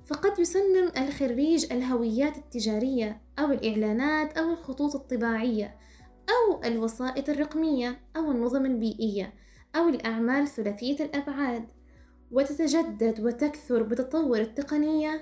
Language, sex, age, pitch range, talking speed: Arabic, female, 10-29, 235-310 Hz, 95 wpm